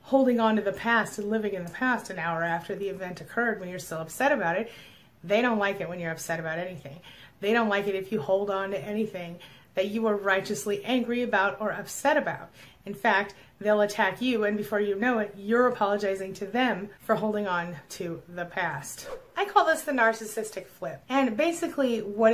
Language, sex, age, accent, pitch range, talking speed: English, female, 30-49, American, 185-225 Hz, 210 wpm